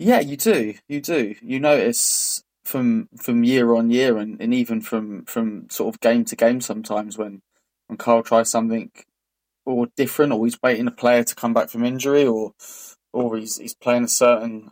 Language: English